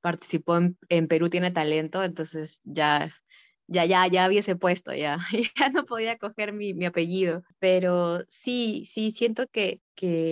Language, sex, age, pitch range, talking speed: Spanish, female, 20-39, 165-195 Hz, 155 wpm